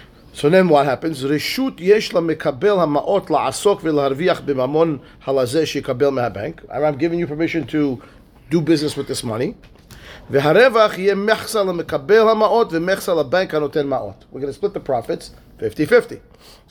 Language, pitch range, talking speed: English, 145-195 Hz, 75 wpm